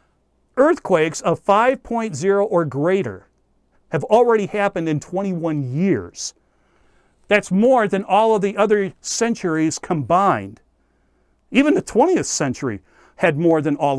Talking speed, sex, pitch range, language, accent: 120 wpm, male, 145-220 Hz, English, American